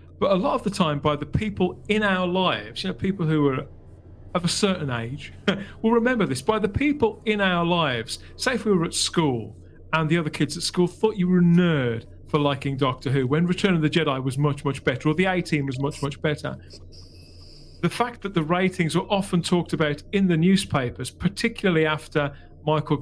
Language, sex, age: English, male, 40-59